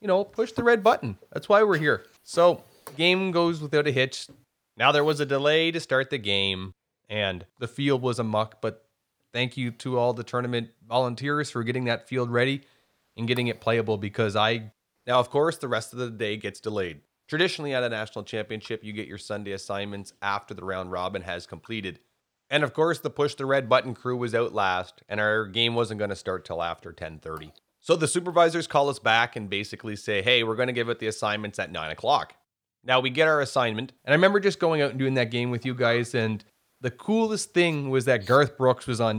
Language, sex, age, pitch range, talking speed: English, male, 30-49, 105-140 Hz, 225 wpm